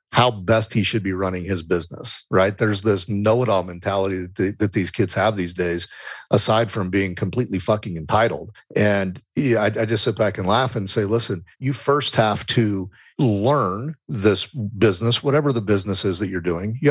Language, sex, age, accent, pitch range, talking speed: English, male, 40-59, American, 100-120 Hz, 190 wpm